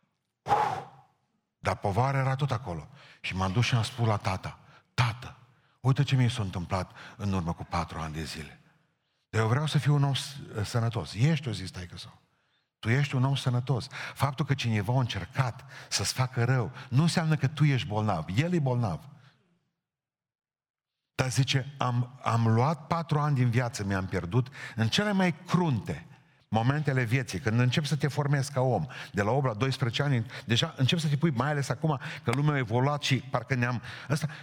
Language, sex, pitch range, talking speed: Romanian, male, 110-145 Hz, 185 wpm